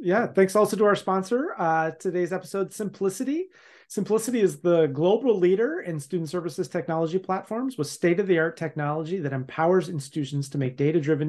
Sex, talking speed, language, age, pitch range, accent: male, 155 wpm, English, 30-49, 145-185 Hz, American